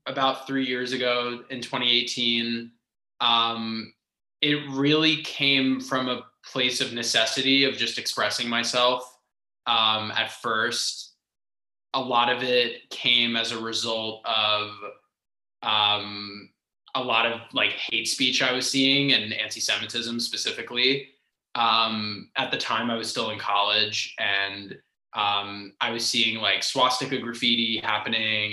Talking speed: 130 wpm